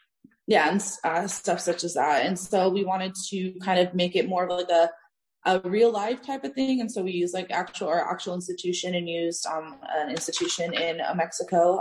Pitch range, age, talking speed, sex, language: 165-205 Hz, 20-39, 220 wpm, female, English